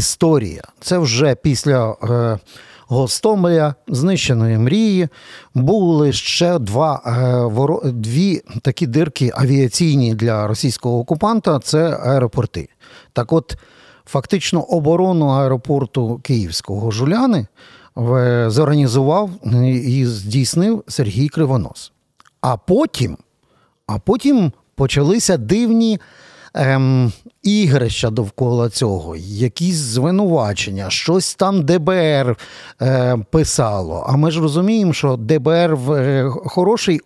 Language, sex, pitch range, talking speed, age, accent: Ukrainian, male, 125-175 Hz, 95 wpm, 50-69, native